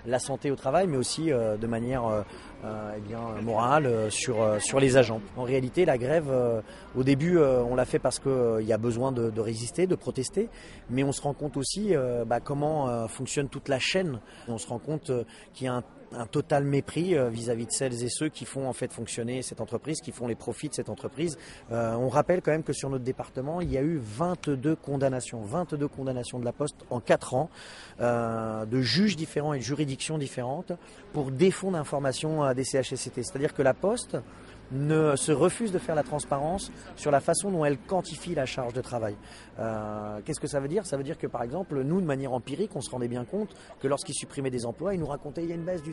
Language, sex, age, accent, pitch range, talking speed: French, male, 30-49, French, 120-150 Hz, 230 wpm